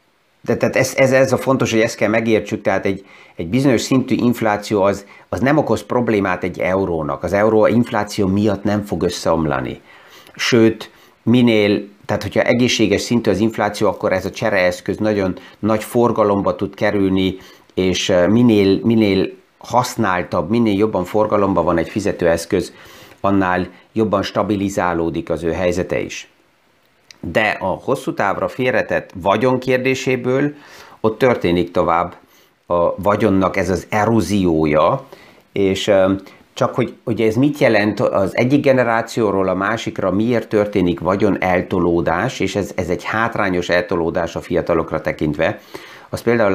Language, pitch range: Hungarian, 90-110 Hz